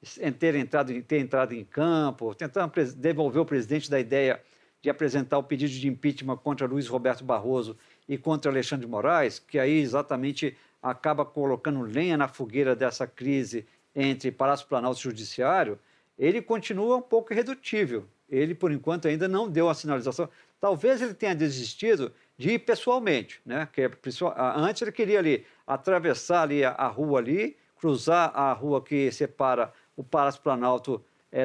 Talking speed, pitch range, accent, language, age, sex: 155 wpm, 135-195 Hz, Brazilian, Portuguese, 50-69, male